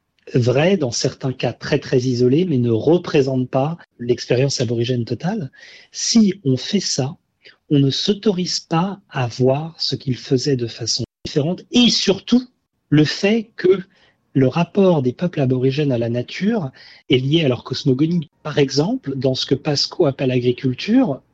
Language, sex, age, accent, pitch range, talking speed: French, male, 40-59, French, 135-185 Hz, 155 wpm